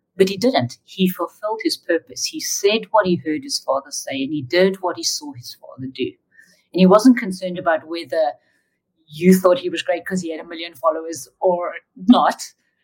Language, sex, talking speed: English, female, 200 wpm